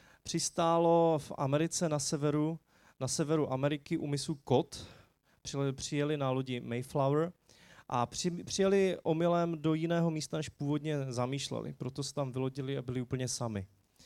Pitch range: 125-150 Hz